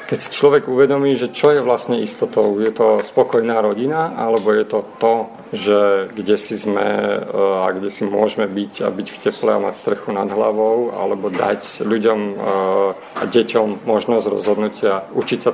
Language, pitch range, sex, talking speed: Slovak, 105-120 Hz, male, 165 wpm